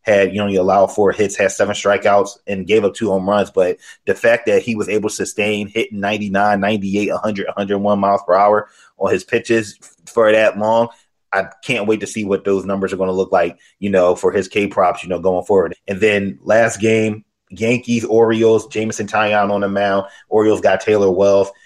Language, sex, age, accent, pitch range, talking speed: English, male, 20-39, American, 100-110 Hz, 215 wpm